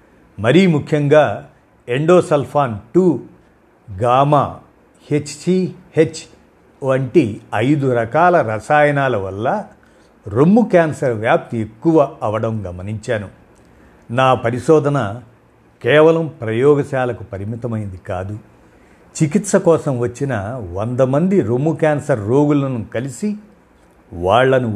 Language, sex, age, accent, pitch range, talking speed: Telugu, male, 50-69, native, 110-155 Hz, 80 wpm